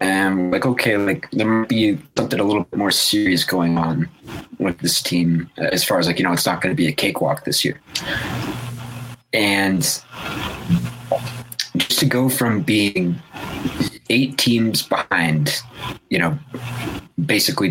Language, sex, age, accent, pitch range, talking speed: English, male, 30-49, American, 100-125 Hz, 155 wpm